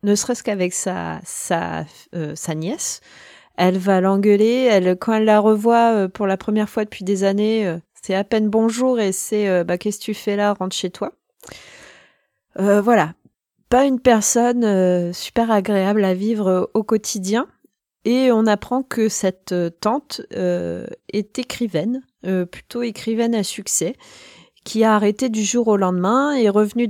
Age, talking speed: 30-49, 165 wpm